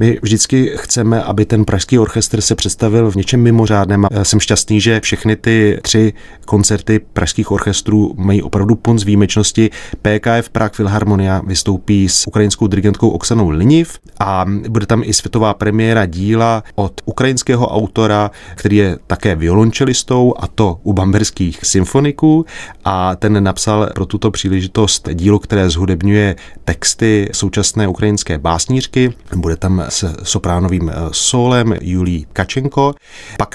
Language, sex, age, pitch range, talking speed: Czech, male, 30-49, 95-115 Hz, 135 wpm